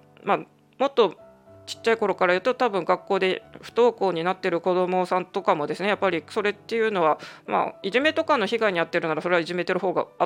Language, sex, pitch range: Japanese, female, 170-220 Hz